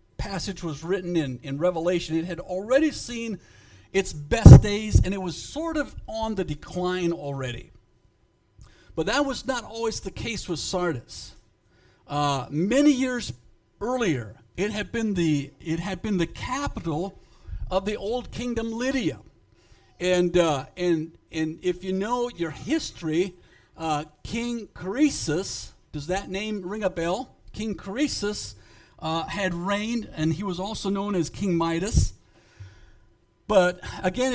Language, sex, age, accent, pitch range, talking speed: English, male, 50-69, American, 150-210 Hz, 145 wpm